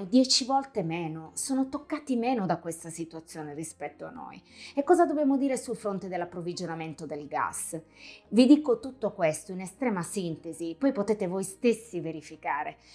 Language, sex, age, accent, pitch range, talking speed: Italian, female, 30-49, native, 175-265 Hz, 155 wpm